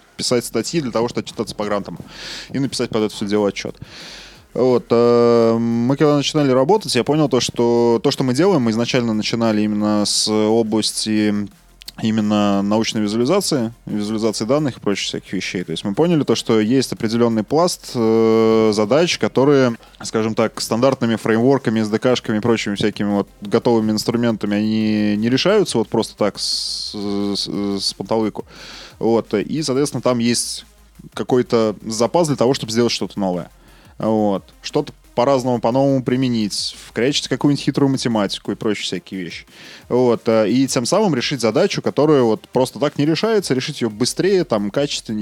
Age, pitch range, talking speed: 20-39, 105-130 Hz, 160 wpm